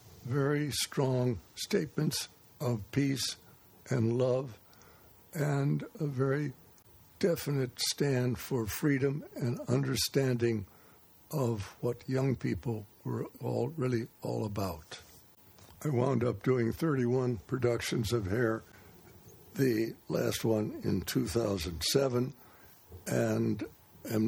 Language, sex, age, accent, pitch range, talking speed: English, male, 60-79, American, 95-120 Hz, 100 wpm